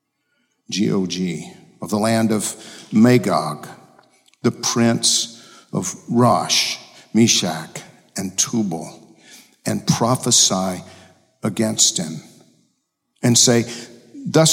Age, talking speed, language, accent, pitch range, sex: 50-69, 85 wpm, English, American, 115-145 Hz, male